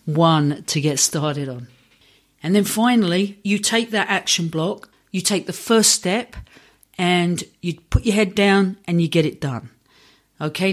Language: English